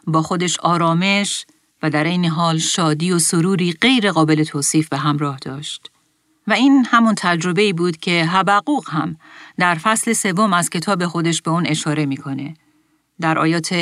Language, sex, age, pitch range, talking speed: Persian, female, 40-59, 155-200 Hz, 155 wpm